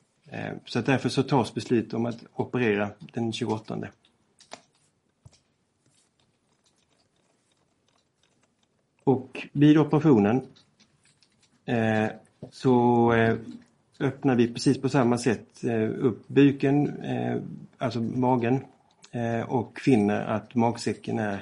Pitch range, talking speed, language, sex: 115-135 Hz, 80 wpm, Swedish, male